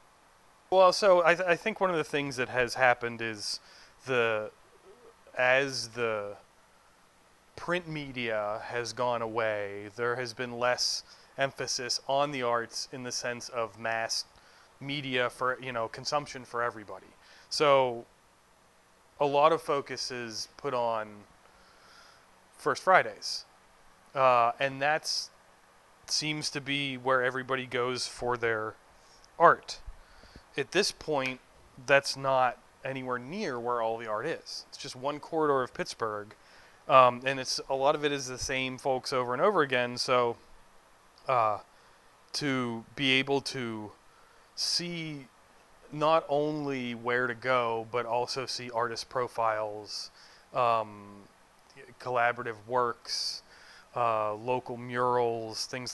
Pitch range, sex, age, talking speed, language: 110-135 Hz, male, 30-49, 130 wpm, English